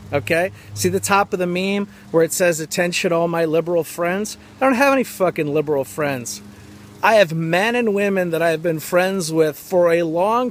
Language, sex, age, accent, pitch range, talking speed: English, male, 40-59, American, 150-185 Hz, 200 wpm